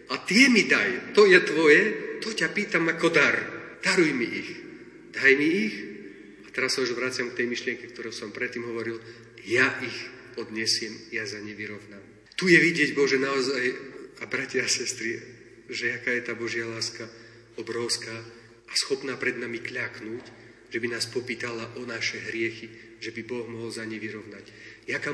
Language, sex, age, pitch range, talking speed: Slovak, male, 40-59, 115-135 Hz, 175 wpm